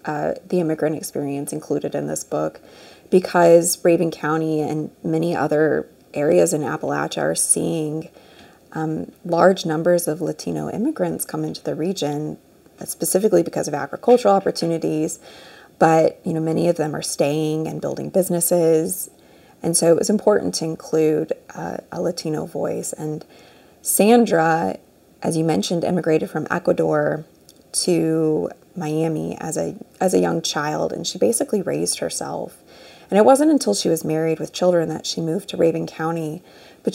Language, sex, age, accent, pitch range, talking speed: English, female, 20-39, American, 150-175 Hz, 150 wpm